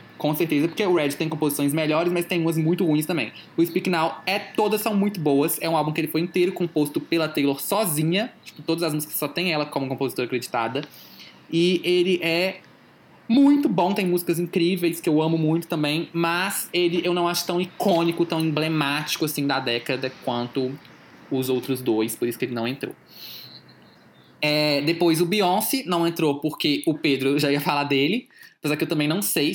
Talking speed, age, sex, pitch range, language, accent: 195 wpm, 20-39, male, 130-170 Hz, Portuguese, Brazilian